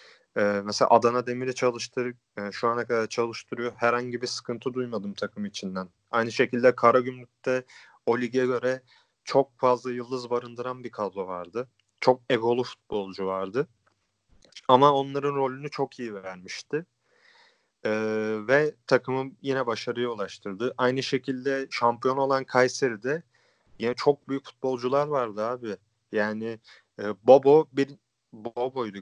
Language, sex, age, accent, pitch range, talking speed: Turkish, male, 30-49, native, 115-140 Hz, 130 wpm